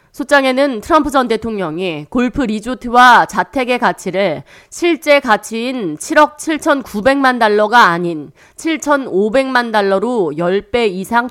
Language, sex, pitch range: Korean, female, 185-260 Hz